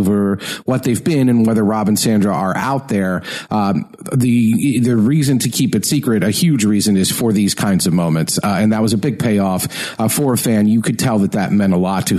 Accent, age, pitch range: American, 40-59, 100-130 Hz